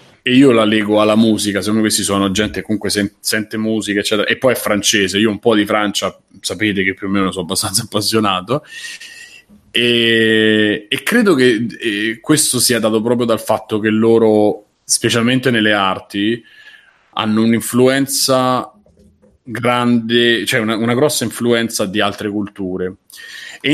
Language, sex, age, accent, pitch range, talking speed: Italian, male, 30-49, native, 100-115 Hz, 150 wpm